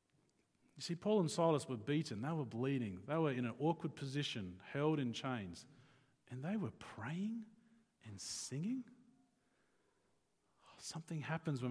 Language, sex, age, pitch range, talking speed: English, male, 40-59, 130-215 Hz, 145 wpm